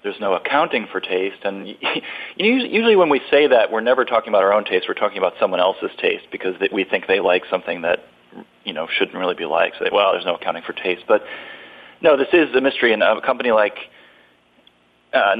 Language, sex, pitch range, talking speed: English, male, 100-135 Hz, 220 wpm